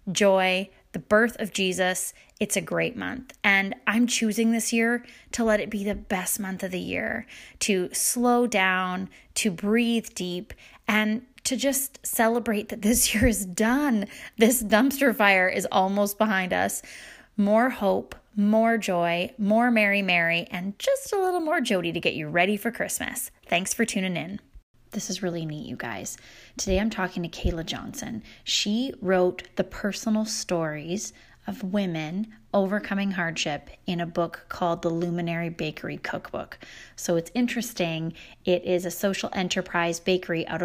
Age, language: 20-39, English